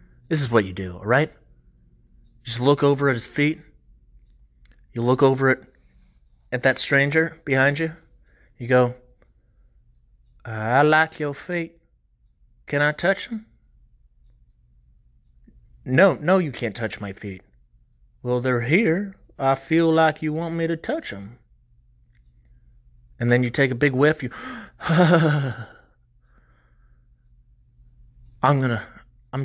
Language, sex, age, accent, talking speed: English, male, 30-49, American, 125 wpm